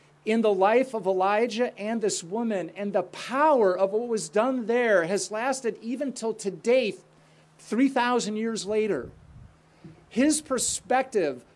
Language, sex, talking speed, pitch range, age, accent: English, male, 135 wpm, 190-235 Hz, 50-69, American